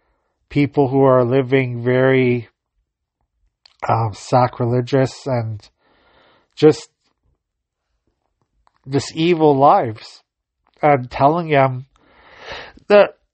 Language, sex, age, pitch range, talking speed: English, male, 40-59, 120-140 Hz, 70 wpm